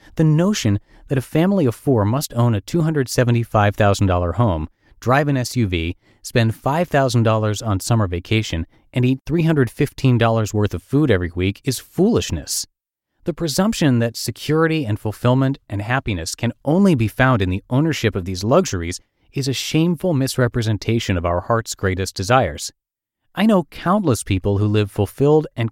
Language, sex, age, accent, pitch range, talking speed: English, male, 30-49, American, 95-130 Hz, 150 wpm